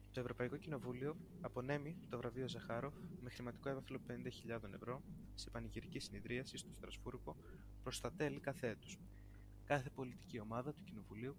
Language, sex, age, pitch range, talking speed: Greek, male, 20-39, 115-145 Hz, 140 wpm